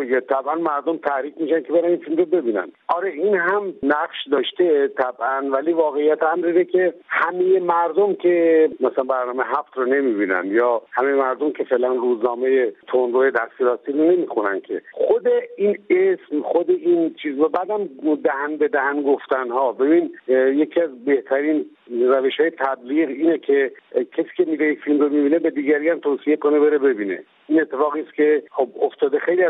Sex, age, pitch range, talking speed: male, 50-69, 140-225 Hz, 165 wpm